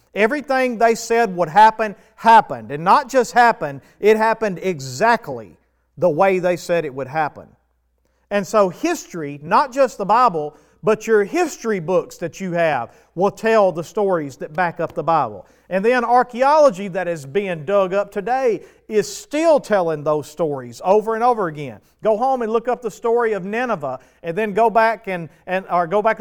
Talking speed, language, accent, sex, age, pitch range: 180 wpm, English, American, male, 50-69, 160-215 Hz